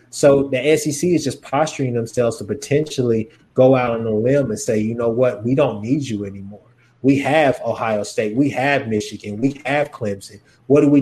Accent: American